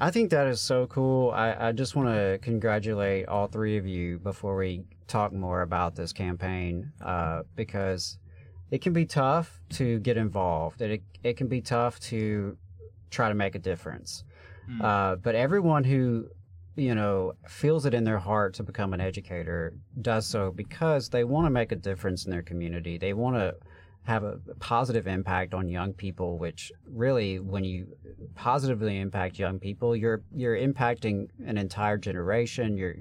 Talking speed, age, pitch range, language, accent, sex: 175 wpm, 40-59, 90-120 Hz, English, American, male